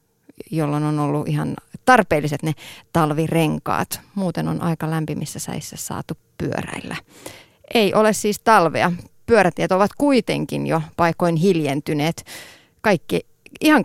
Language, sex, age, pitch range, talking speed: Finnish, female, 30-49, 155-200 Hz, 110 wpm